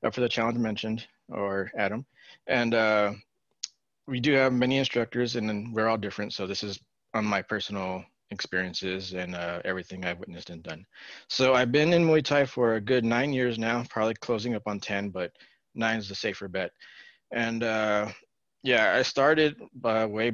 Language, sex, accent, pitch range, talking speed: English, male, American, 100-120 Hz, 180 wpm